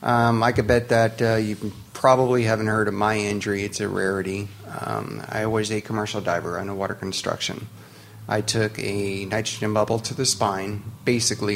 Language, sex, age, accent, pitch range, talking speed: English, male, 30-49, American, 100-115 Hz, 175 wpm